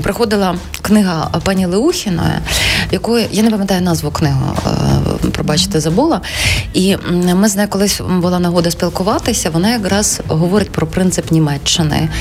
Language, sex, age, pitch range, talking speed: Ukrainian, female, 20-39, 150-195 Hz, 130 wpm